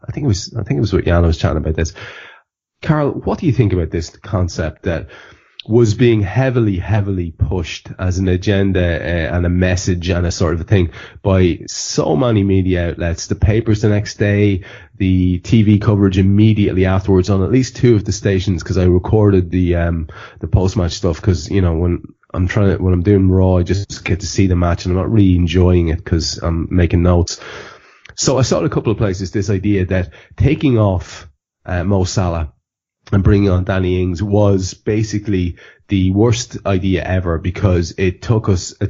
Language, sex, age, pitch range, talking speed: English, male, 30-49, 90-105 Hz, 200 wpm